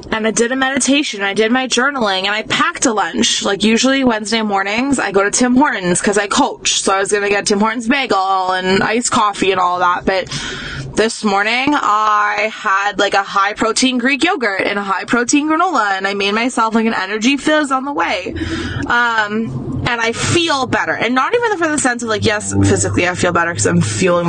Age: 20-39